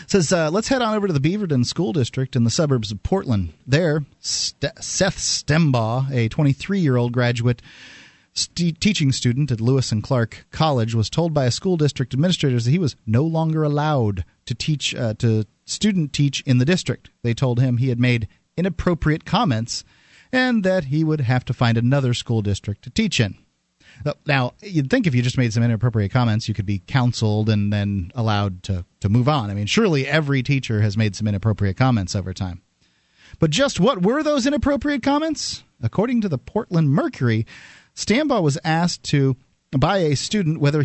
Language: English